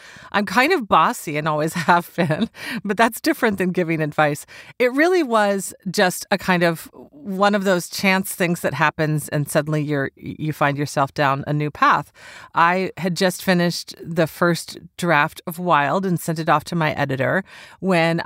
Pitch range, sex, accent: 155-205 Hz, female, American